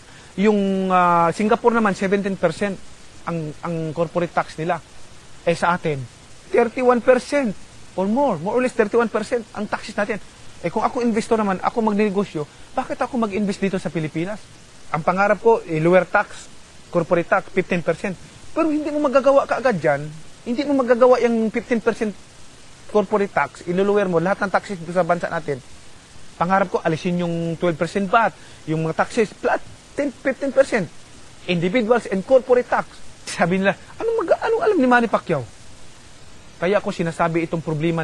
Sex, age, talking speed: male, 30-49, 150 wpm